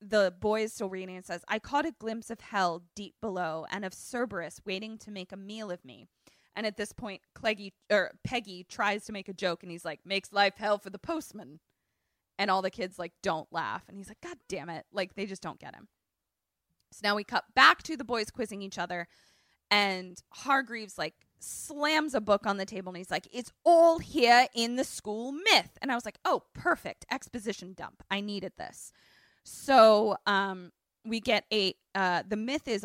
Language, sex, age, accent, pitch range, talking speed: English, female, 20-39, American, 185-235 Hz, 210 wpm